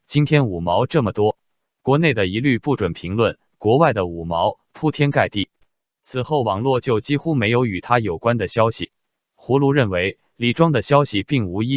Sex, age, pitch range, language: male, 20-39, 100-135 Hz, Chinese